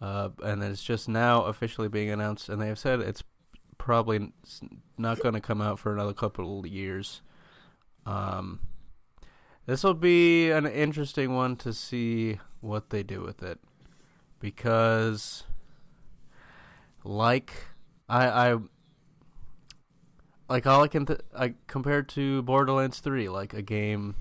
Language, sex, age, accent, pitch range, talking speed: English, male, 20-39, American, 105-130 Hz, 140 wpm